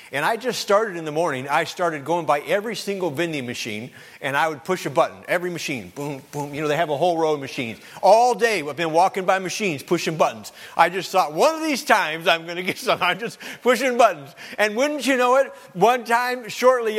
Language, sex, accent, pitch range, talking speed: English, male, American, 165-240 Hz, 235 wpm